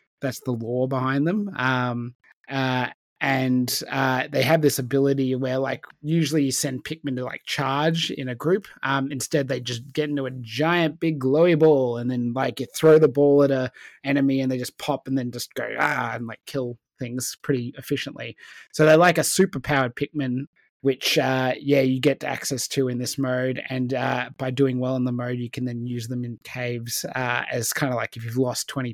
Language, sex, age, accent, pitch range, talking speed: English, male, 20-39, Australian, 125-145 Hz, 210 wpm